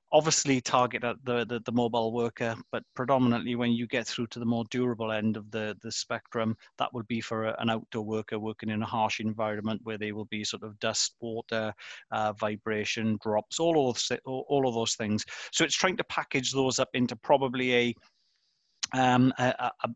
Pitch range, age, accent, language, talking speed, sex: 115-130 Hz, 30-49, British, English, 195 wpm, male